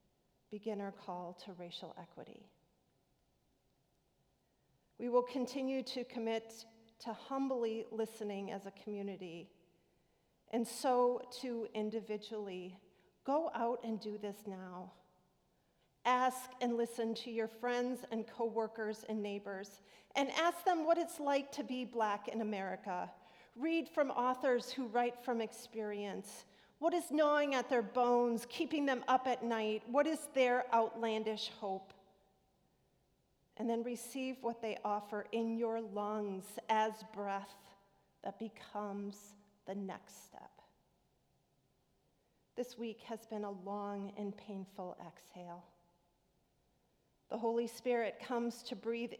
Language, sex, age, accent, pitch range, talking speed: English, female, 40-59, American, 200-245 Hz, 125 wpm